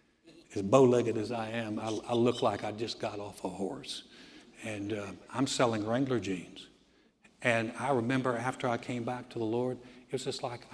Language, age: English, 60-79